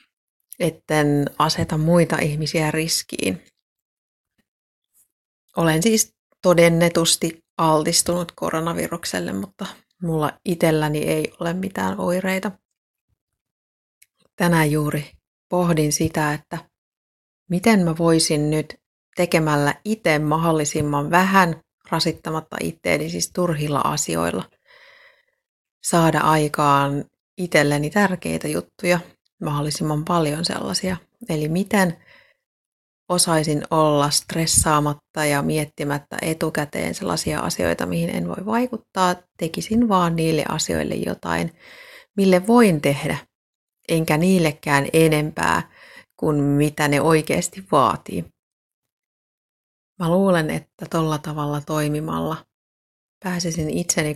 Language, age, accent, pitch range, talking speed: Finnish, 30-49, native, 150-180 Hz, 90 wpm